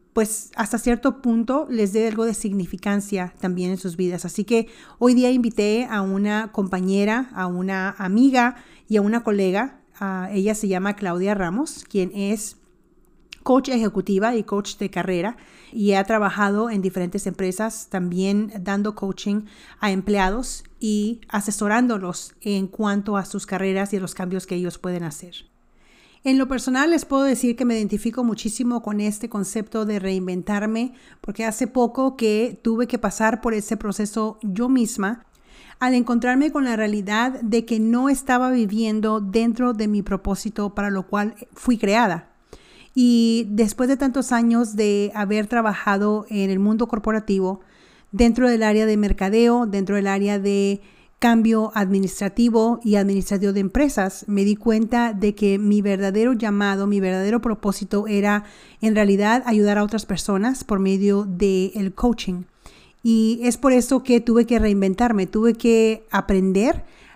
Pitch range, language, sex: 200-235 Hz, English, female